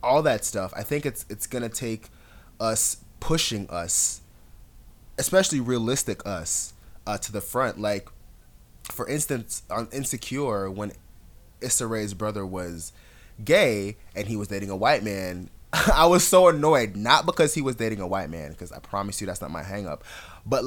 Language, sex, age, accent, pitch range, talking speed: English, male, 20-39, American, 95-125 Hz, 170 wpm